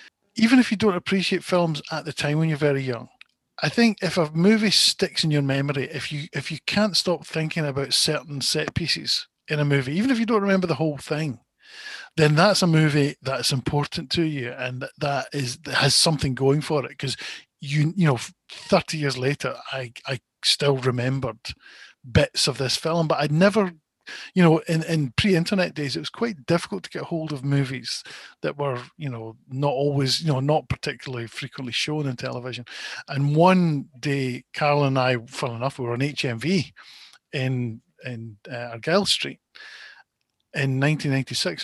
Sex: male